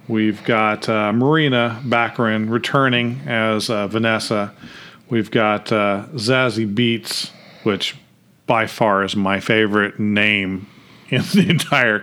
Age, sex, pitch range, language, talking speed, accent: 40-59, male, 105-130 Hz, English, 120 wpm, American